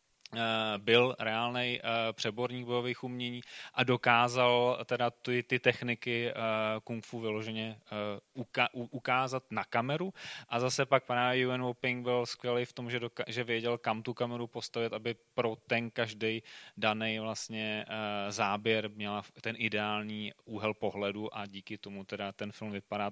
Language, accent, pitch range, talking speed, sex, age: Czech, native, 115-135 Hz, 150 wpm, male, 20-39